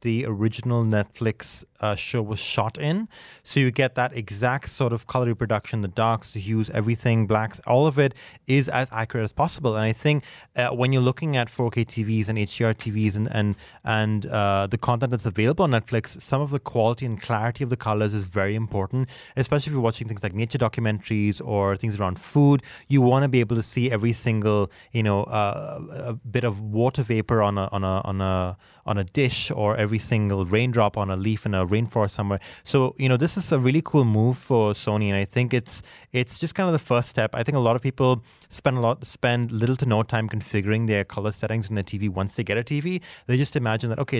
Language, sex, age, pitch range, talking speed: English, male, 30-49, 105-130 Hz, 225 wpm